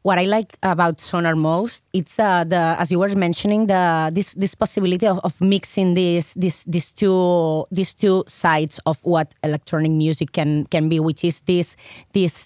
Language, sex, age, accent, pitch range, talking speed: English, female, 20-39, Spanish, 170-195 Hz, 185 wpm